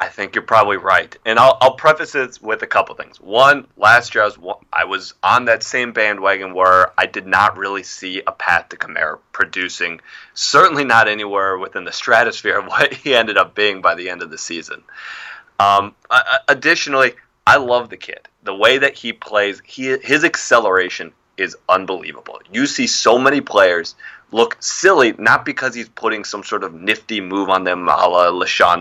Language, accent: English, American